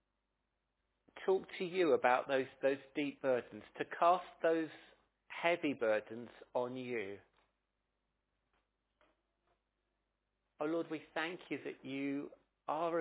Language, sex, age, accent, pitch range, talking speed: English, male, 50-69, British, 130-165 Hz, 105 wpm